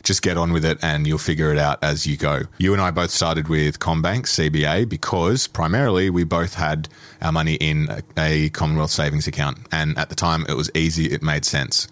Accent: Australian